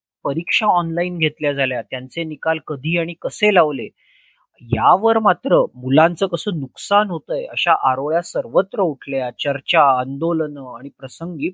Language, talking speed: Marathi, 75 wpm